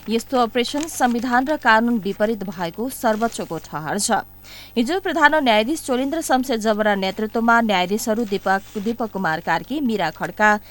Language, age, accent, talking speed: English, 20-39, Indian, 140 wpm